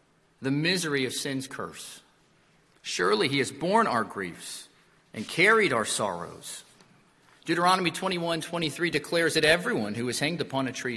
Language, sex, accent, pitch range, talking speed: English, male, American, 125-165 Hz, 140 wpm